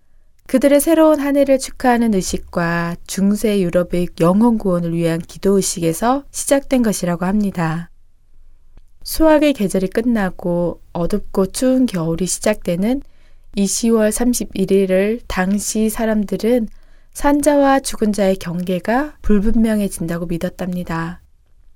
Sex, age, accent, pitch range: female, 20-39, native, 185-245 Hz